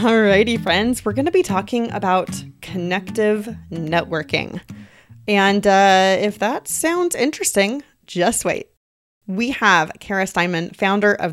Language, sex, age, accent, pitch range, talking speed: English, female, 30-49, American, 170-220 Hz, 135 wpm